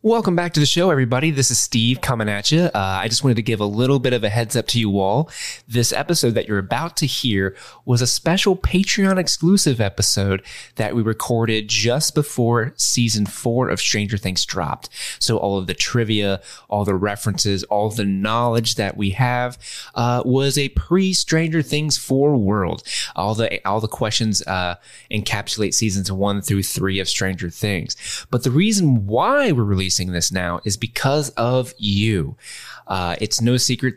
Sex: male